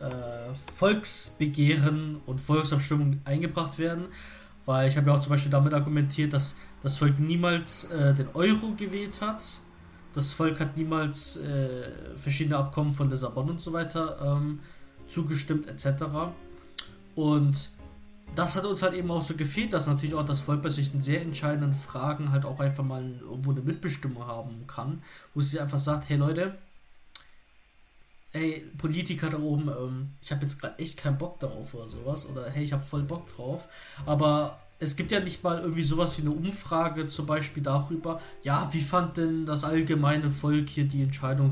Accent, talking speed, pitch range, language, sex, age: German, 170 wpm, 135-165 Hz, German, male, 20-39